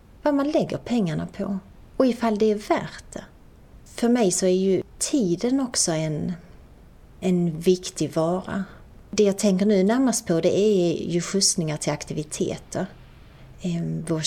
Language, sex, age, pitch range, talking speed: Swedish, female, 30-49, 170-225 Hz, 145 wpm